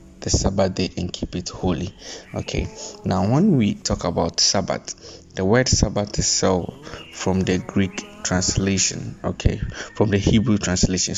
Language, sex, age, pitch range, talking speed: English, male, 20-39, 90-105 Hz, 145 wpm